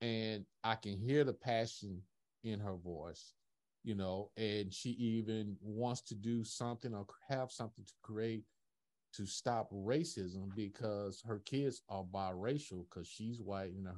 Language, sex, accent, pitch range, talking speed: English, male, American, 95-120 Hz, 155 wpm